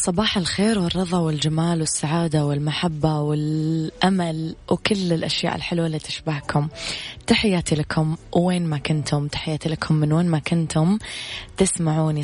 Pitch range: 150-175 Hz